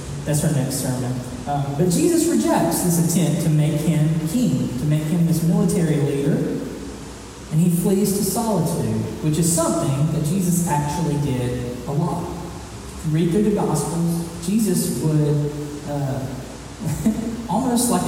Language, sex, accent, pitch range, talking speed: English, male, American, 145-180 Hz, 145 wpm